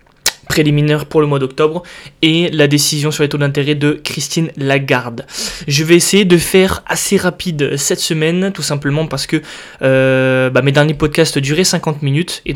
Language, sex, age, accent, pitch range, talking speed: French, male, 20-39, French, 135-170 Hz, 175 wpm